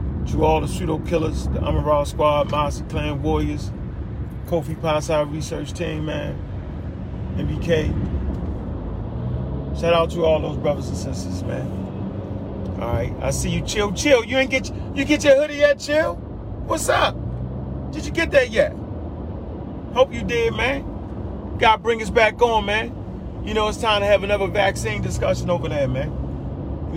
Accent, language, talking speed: American, English, 160 wpm